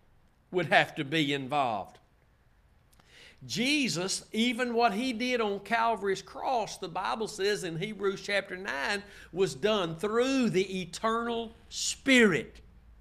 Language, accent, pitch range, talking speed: English, American, 185-235 Hz, 120 wpm